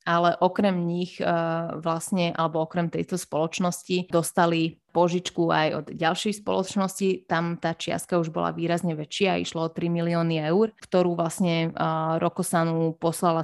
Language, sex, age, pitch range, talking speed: Slovak, female, 20-39, 165-185 Hz, 135 wpm